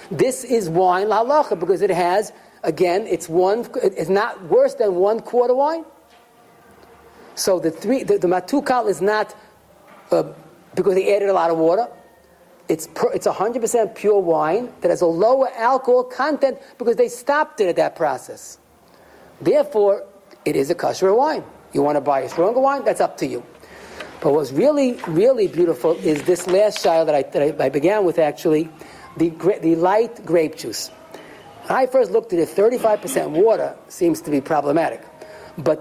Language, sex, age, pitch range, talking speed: English, male, 50-69, 170-245 Hz, 175 wpm